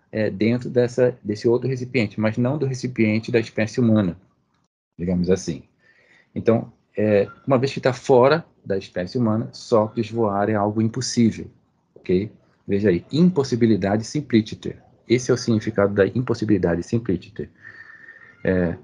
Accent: Brazilian